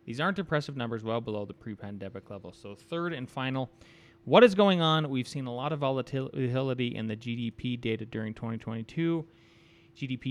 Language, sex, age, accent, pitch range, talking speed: English, male, 30-49, American, 110-150 Hz, 175 wpm